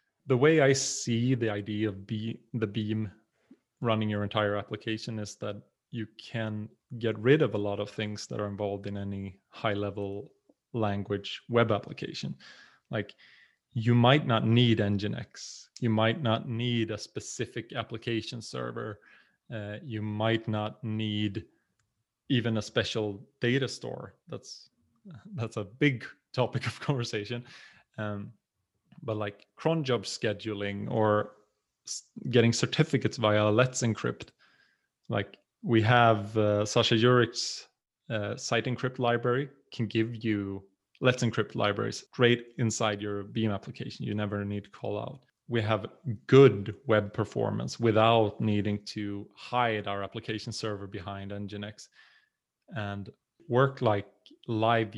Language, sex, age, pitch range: English, male, 30-49, 105-120 Hz